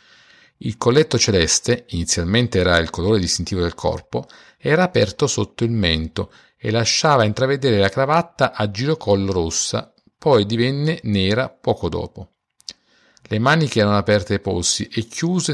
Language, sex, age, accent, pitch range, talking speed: Italian, male, 50-69, native, 95-130 Hz, 140 wpm